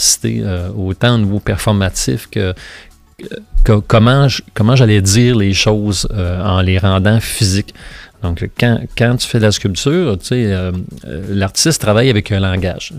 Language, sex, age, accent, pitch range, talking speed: French, male, 30-49, Canadian, 95-115 Hz, 170 wpm